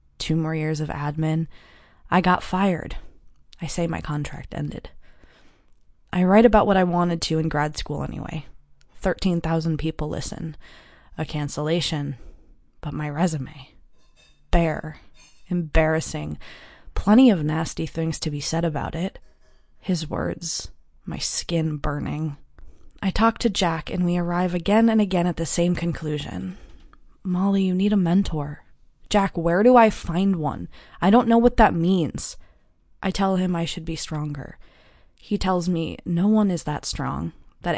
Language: English